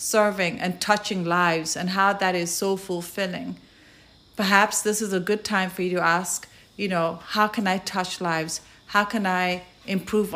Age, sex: 40-59, female